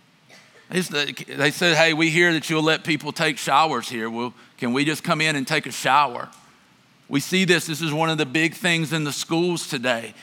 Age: 50-69